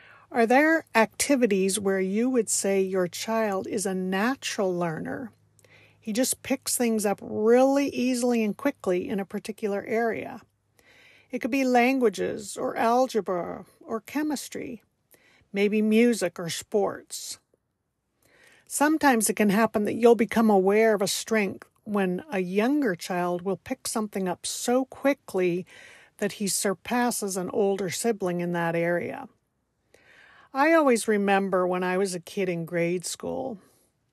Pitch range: 195-245 Hz